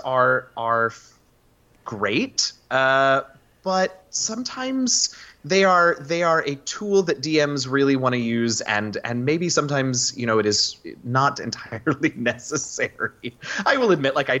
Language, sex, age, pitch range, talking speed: English, male, 30-49, 105-150 Hz, 140 wpm